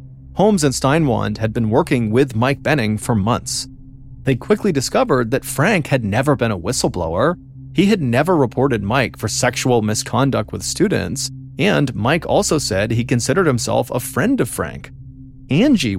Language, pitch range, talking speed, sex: English, 110-135 Hz, 160 wpm, male